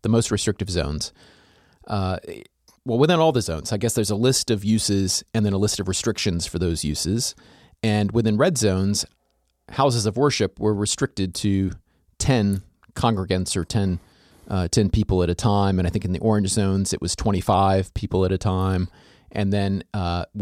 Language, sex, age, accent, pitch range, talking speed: English, male, 30-49, American, 90-115 Hz, 185 wpm